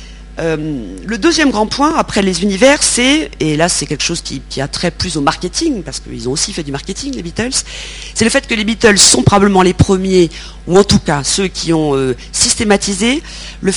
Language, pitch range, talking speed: French, 155-220 Hz, 215 wpm